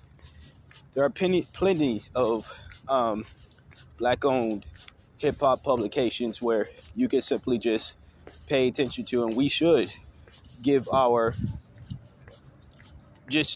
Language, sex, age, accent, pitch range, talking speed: English, male, 20-39, American, 120-160 Hz, 100 wpm